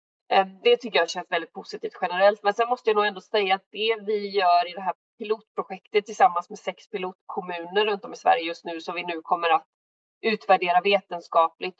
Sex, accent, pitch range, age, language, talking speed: female, native, 175-220 Hz, 30-49, Swedish, 200 wpm